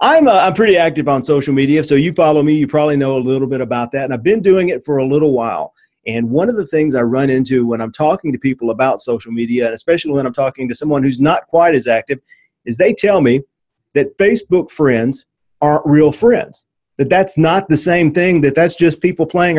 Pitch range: 135-175 Hz